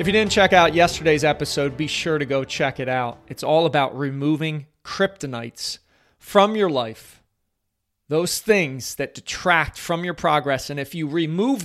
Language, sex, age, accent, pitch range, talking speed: English, male, 40-59, American, 115-175 Hz, 170 wpm